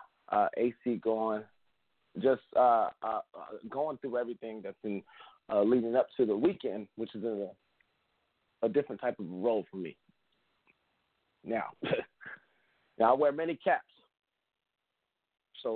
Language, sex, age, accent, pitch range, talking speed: English, male, 40-59, American, 105-155 Hz, 130 wpm